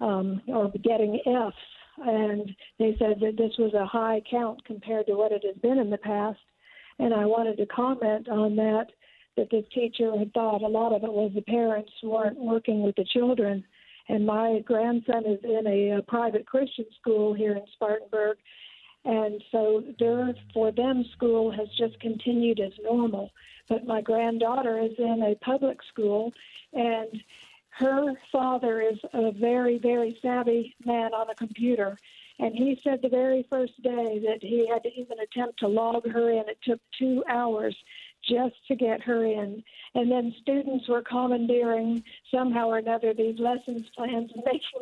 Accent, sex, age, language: American, female, 50-69, English